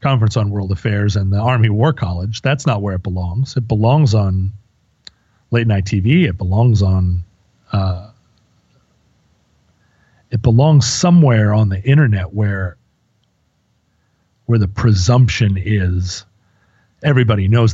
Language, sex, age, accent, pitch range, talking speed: English, male, 40-59, American, 100-125 Hz, 125 wpm